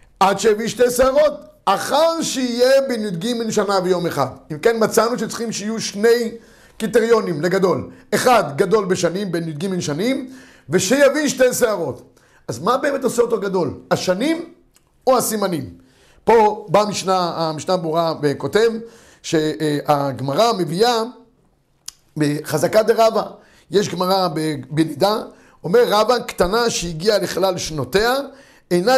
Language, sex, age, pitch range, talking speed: Hebrew, male, 50-69, 175-240 Hz, 110 wpm